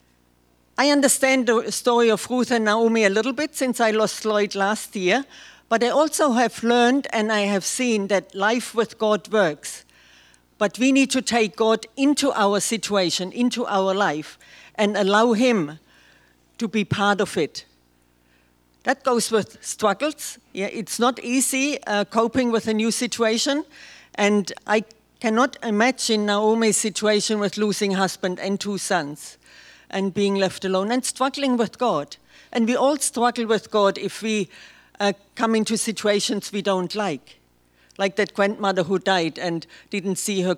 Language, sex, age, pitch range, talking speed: English, female, 50-69, 195-240 Hz, 160 wpm